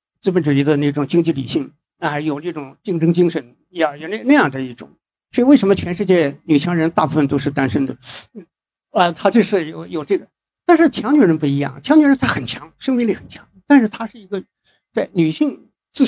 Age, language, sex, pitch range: 50-69, Chinese, male, 145-220 Hz